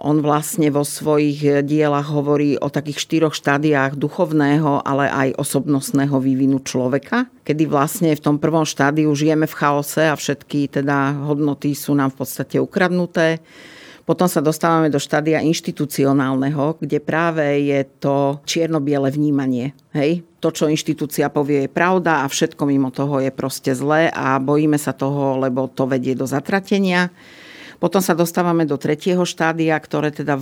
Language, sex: Slovak, female